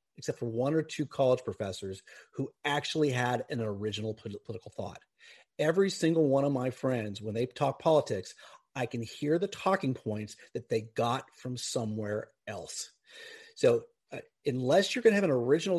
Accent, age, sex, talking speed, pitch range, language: American, 40-59, male, 170 wpm, 120-155 Hz, English